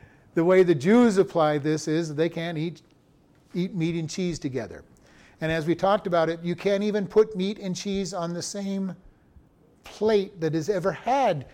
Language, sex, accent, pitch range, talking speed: English, male, American, 160-190 Hz, 185 wpm